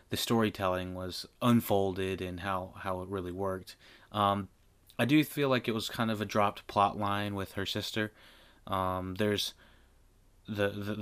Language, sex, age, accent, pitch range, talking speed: English, male, 30-49, American, 95-115 Hz, 160 wpm